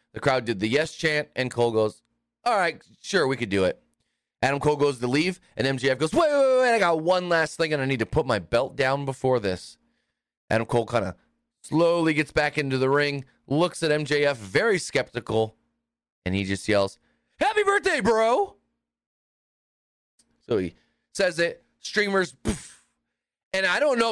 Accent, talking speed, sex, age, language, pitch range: American, 185 wpm, male, 30-49, English, 120-170 Hz